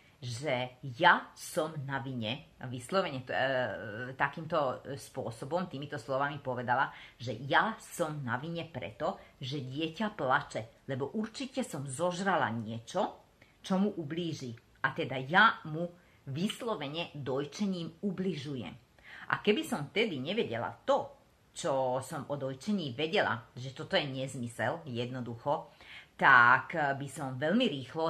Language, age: Slovak, 30-49